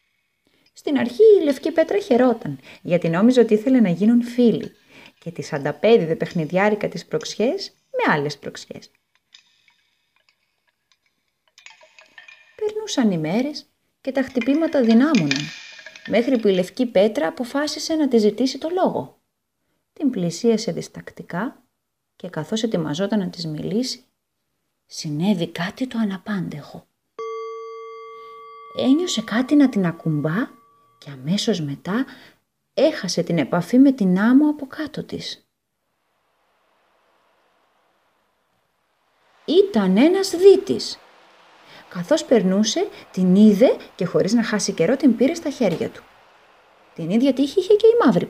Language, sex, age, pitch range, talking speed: Greek, female, 30-49, 190-275 Hz, 115 wpm